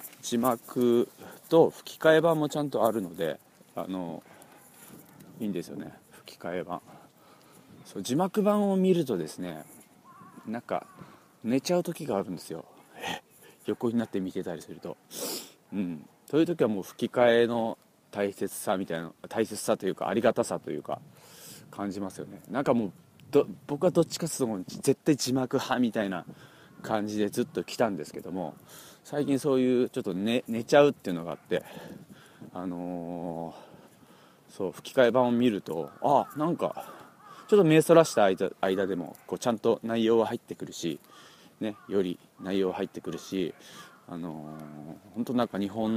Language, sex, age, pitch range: Japanese, male, 40-59, 95-140 Hz